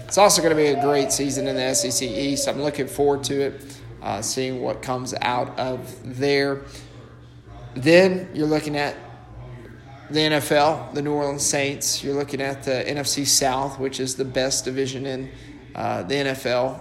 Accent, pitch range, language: American, 130-145 Hz, English